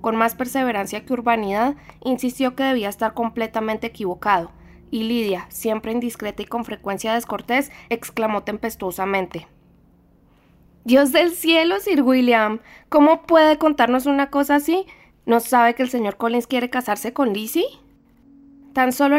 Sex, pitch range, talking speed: female, 215-255 Hz, 140 wpm